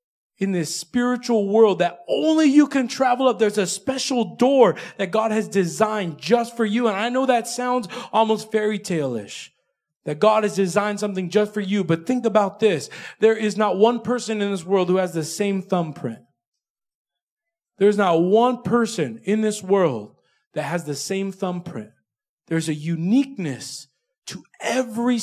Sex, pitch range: male, 175-230 Hz